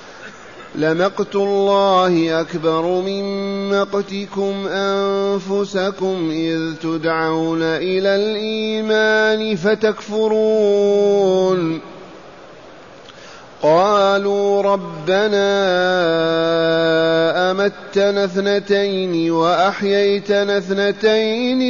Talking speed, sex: 45 wpm, male